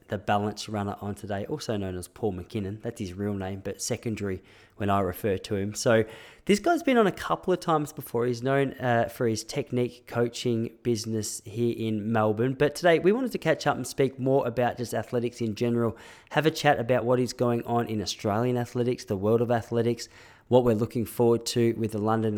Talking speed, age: 215 wpm, 20-39